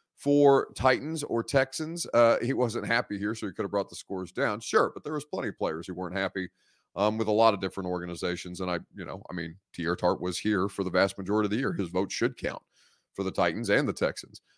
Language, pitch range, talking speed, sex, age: English, 95-120 Hz, 250 wpm, male, 30-49